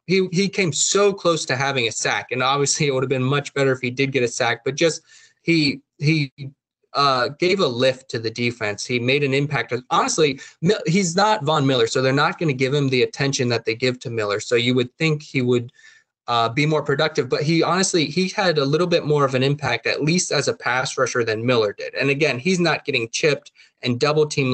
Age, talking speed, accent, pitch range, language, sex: 20-39, 235 wpm, American, 130-165 Hz, English, male